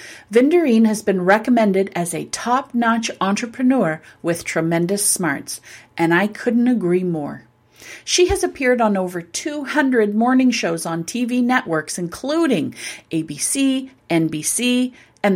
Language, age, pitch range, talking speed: English, 40-59, 175-250 Hz, 120 wpm